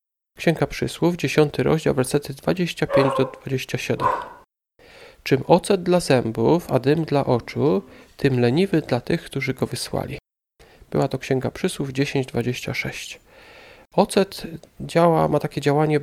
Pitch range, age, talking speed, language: 135-165 Hz, 40-59, 115 wpm, Polish